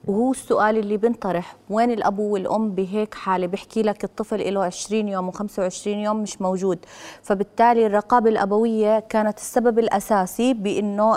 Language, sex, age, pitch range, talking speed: Arabic, female, 20-39, 210-260 Hz, 140 wpm